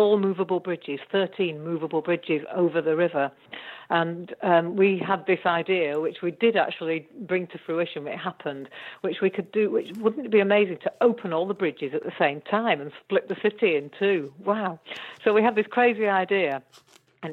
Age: 50-69